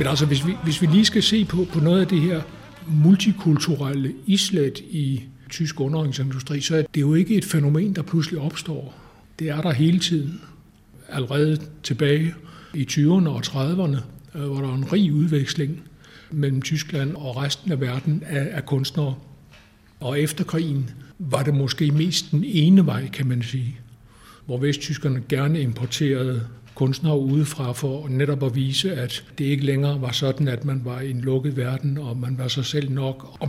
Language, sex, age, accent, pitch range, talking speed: Danish, male, 60-79, native, 135-155 Hz, 175 wpm